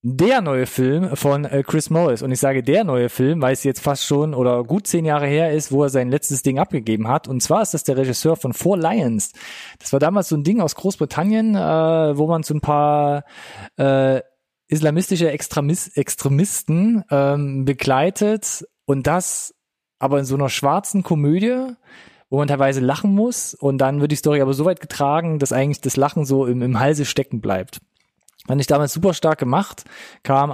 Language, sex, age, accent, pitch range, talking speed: German, male, 20-39, German, 135-165 Hz, 190 wpm